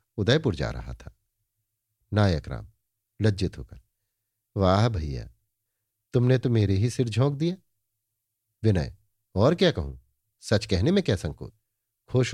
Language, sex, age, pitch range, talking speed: Hindi, male, 50-69, 105-125 Hz, 125 wpm